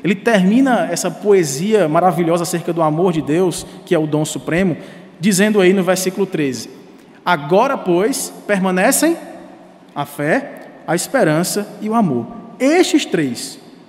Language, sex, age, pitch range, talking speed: Portuguese, male, 20-39, 185-240 Hz, 140 wpm